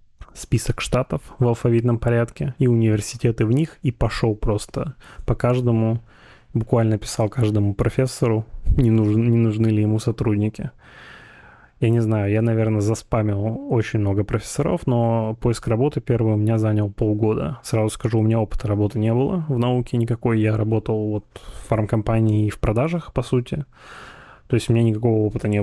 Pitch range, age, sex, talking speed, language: 110-125 Hz, 20-39, male, 160 wpm, Russian